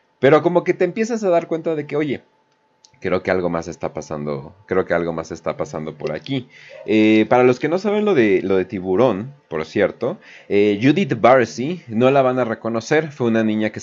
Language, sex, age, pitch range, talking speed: Spanish, male, 30-49, 95-135 Hz, 215 wpm